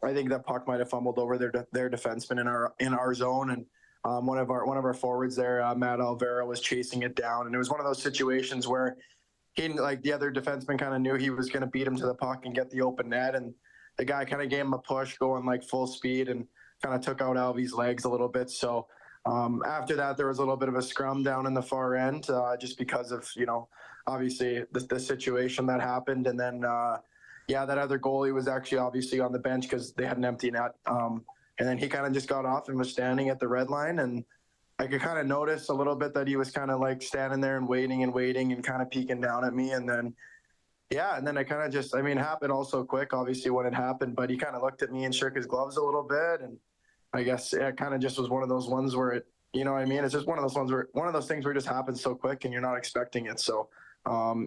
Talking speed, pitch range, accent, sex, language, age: 280 wpm, 125-135 Hz, American, male, English, 20-39